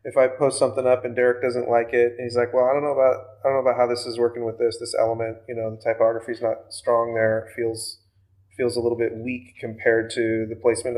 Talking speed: 260 wpm